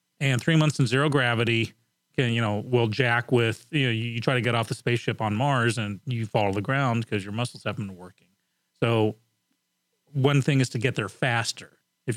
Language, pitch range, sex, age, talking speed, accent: English, 115-145 Hz, male, 40-59, 215 wpm, American